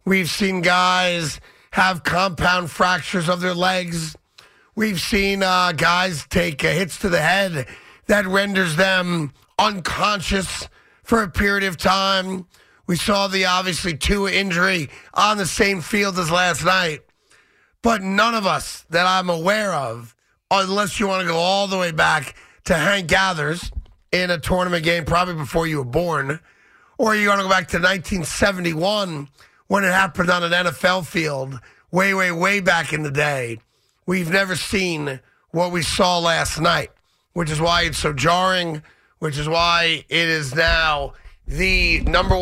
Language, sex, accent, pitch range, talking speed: English, male, American, 160-190 Hz, 160 wpm